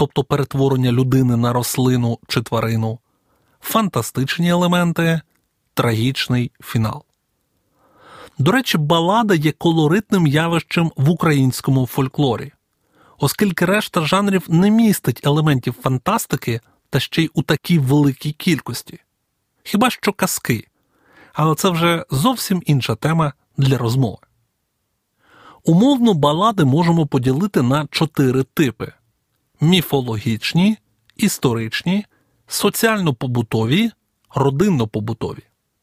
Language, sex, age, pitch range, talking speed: Ukrainian, male, 30-49, 130-180 Hz, 95 wpm